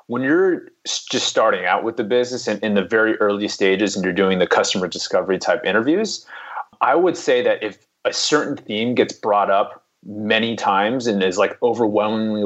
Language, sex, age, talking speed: English, male, 30-49, 190 wpm